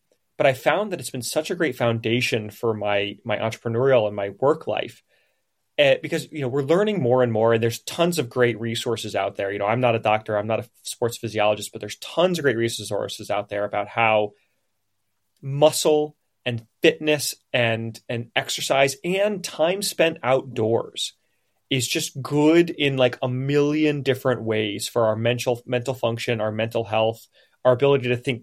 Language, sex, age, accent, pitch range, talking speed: English, male, 30-49, American, 115-150 Hz, 185 wpm